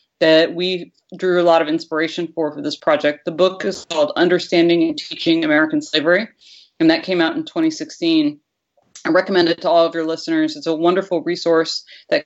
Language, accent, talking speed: English, American, 190 wpm